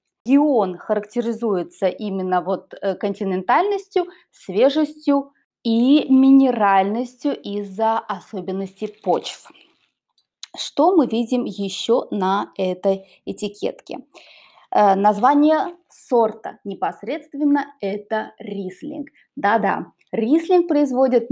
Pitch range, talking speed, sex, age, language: 200-290 Hz, 75 wpm, female, 20-39, Russian